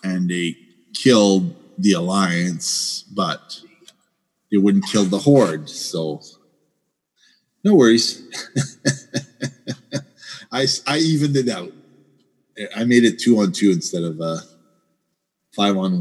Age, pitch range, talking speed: 40-59, 100-155 Hz, 110 wpm